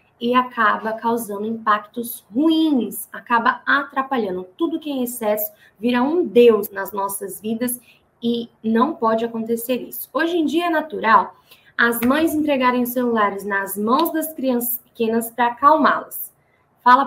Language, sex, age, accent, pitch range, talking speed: Portuguese, female, 20-39, Brazilian, 220-265 Hz, 140 wpm